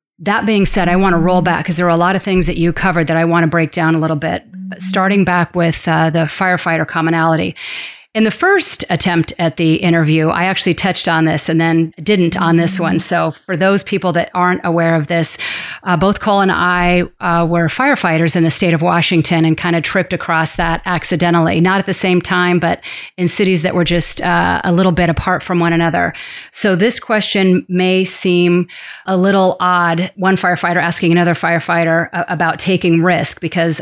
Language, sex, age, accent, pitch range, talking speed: English, female, 40-59, American, 165-185 Hz, 210 wpm